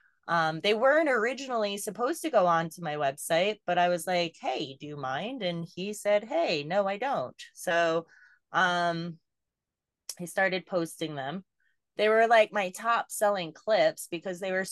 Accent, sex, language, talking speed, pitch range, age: American, female, English, 165 wpm, 165-215 Hz, 20-39